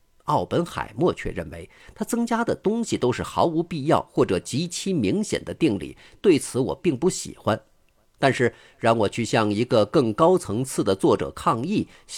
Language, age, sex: Chinese, 50-69, male